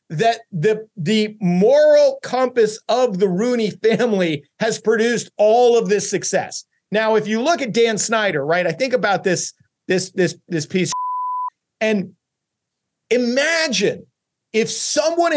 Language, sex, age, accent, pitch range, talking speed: English, male, 40-59, American, 185-240 Hz, 145 wpm